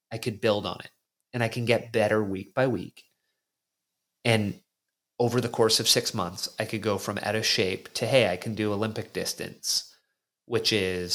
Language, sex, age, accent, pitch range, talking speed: English, male, 30-49, American, 105-125 Hz, 195 wpm